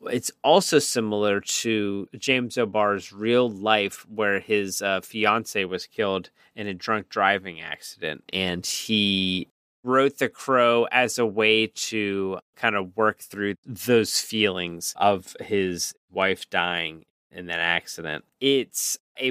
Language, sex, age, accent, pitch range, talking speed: English, male, 30-49, American, 95-125 Hz, 135 wpm